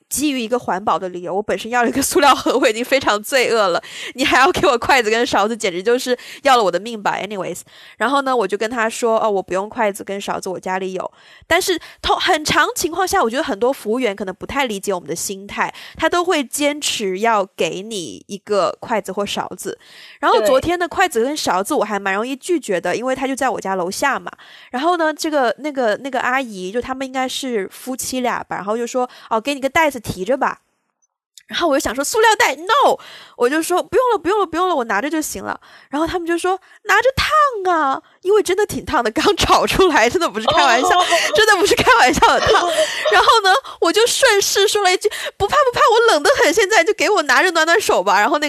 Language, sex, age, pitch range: Chinese, female, 20-39, 220-340 Hz